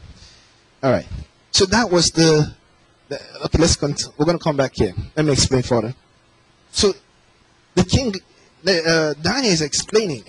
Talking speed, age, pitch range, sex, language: 155 wpm, 30-49, 115-185 Hz, male, English